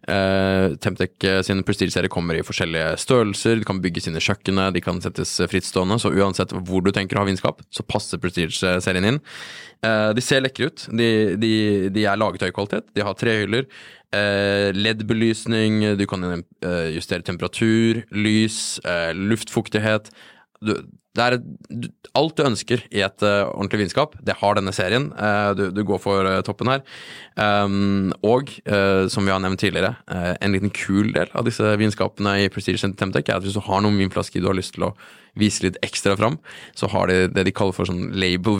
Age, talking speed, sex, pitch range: 20-39, 180 wpm, male, 95-110 Hz